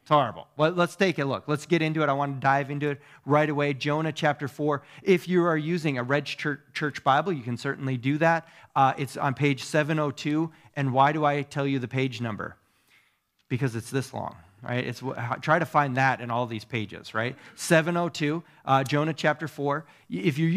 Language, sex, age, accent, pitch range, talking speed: English, male, 30-49, American, 115-150 Hz, 205 wpm